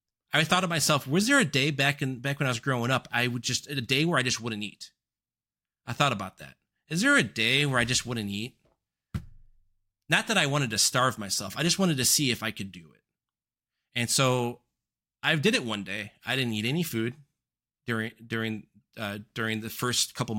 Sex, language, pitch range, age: male, English, 110-140 Hz, 30-49